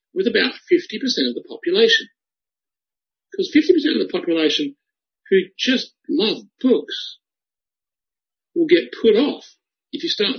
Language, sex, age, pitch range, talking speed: English, male, 50-69, 230-355 Hz, 125 wpm